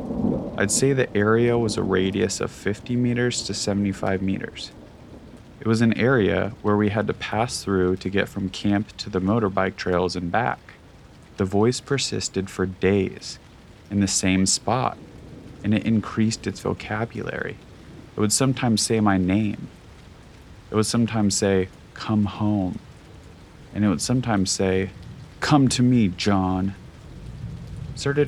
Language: English